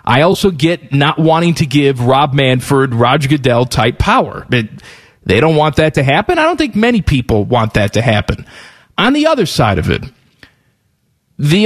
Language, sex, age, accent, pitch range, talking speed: English, male, 40-59, American, 135-200 Hz, 180 wpm